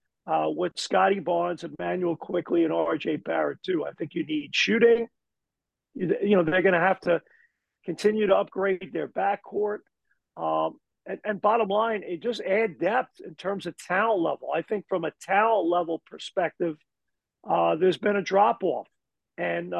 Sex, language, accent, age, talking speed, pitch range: male, English, American, 50-69, 170 wpm, 175-215 Hz